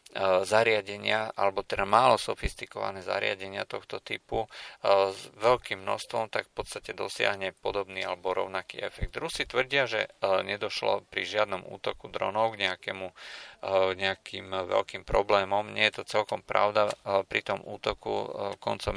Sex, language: male, Slovak